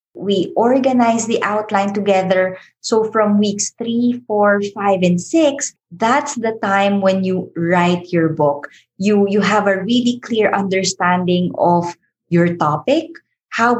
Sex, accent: female, Filipino